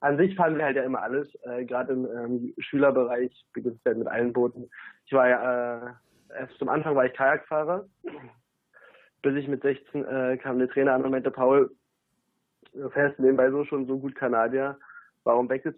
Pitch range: 120-135 Hz